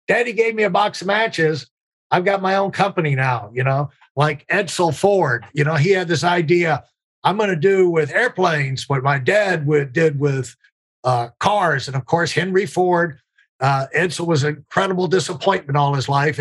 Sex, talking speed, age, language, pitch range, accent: male, 185 wpm, 50-69, English, 140-185 Hz, American